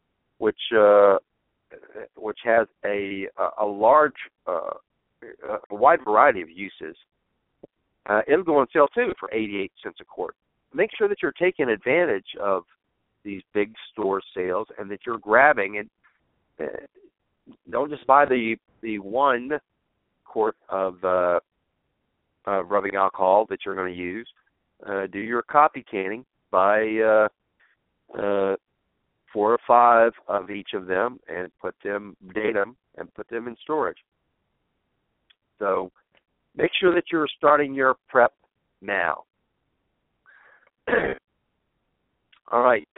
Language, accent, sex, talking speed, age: English, American, male, 130 wpm, 50-69